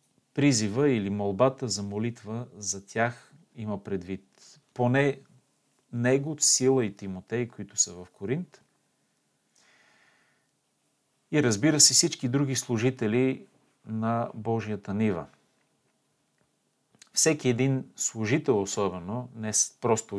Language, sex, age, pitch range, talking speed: Bulgarian, male, 40-59, 105-135 Hz, 100 wpm